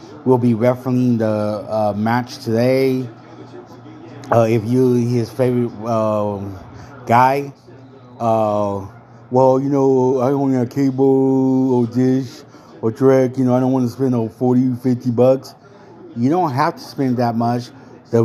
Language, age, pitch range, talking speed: English, 30-49, 115-130 Hz, 150 wpm